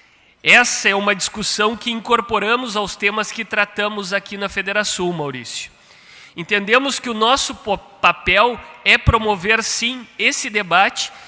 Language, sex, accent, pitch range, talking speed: Portuguese, male, Brazilian, 190-230 Hz, 130 wpm